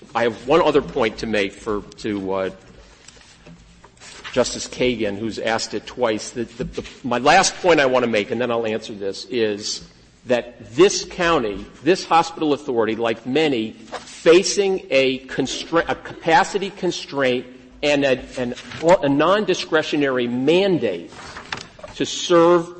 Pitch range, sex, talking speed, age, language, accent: 115-165 Hz, male, 140 wpm, 50-69, English, American